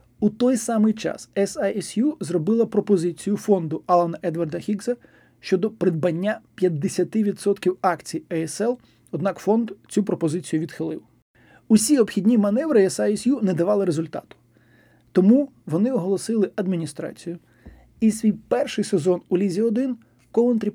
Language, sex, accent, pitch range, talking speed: Ukrainian, male, native, 175-215 Hz, 115 wpm